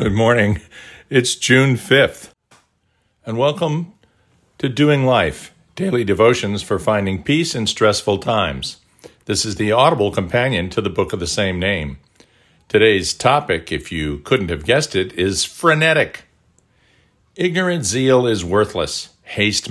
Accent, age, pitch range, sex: American, 50-69, 105-140 Hz, male